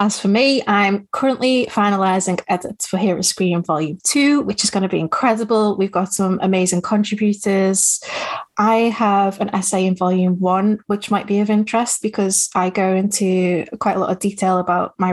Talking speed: 180 wpm